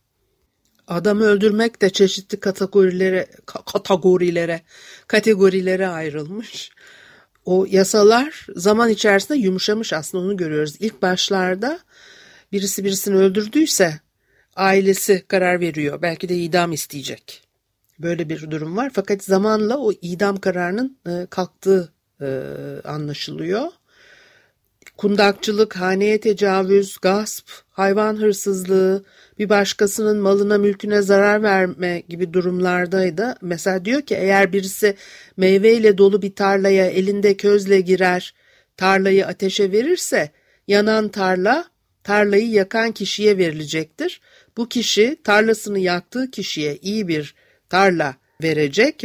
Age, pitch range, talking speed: 60-79, 185-210 Hz, 100 wpm